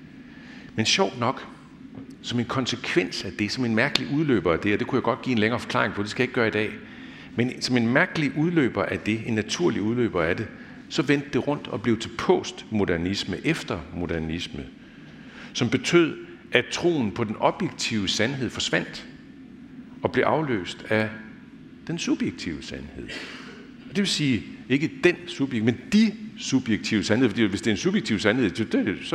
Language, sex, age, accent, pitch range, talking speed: Danish, male, 60-79, native, 100-170 Hz, 180 wpm